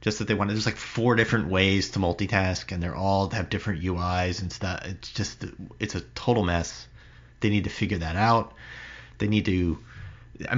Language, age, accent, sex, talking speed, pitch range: English, 30-49, American, male, 205 wpm, 90-110 Hz